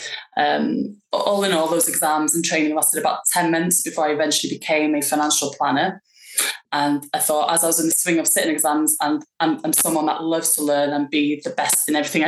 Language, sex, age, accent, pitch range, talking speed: English, female, 20-39, British, 145-160 Hz, 220 wpm